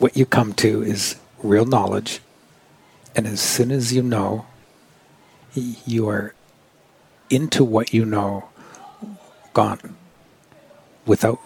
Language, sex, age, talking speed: English, male, 60-79, 110 wpm